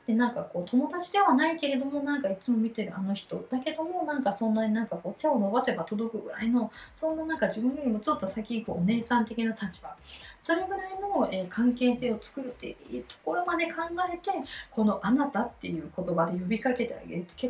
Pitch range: 195-280 Hz